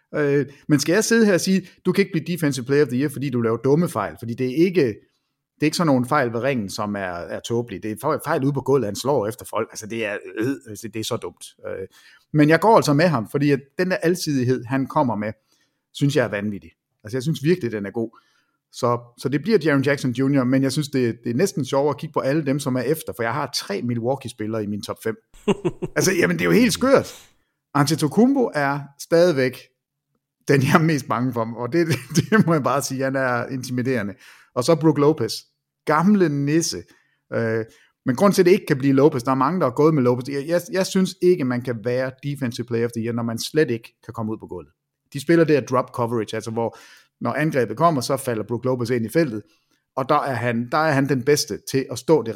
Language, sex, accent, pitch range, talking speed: Danish, male, native, 120-155 Hz, 240 wpm